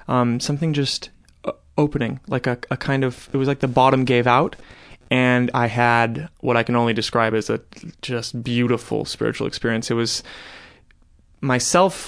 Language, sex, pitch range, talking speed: English, male, 125-150 Hz, 165 wpm